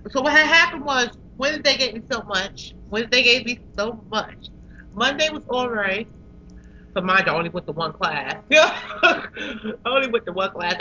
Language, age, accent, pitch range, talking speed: English, 30-49, American, 205-290 Hz, 190 wpm